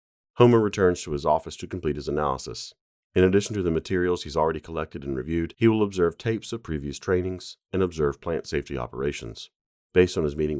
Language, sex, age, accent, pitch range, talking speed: English, male, 40-59, American, 75-95 Hz, 200 wpm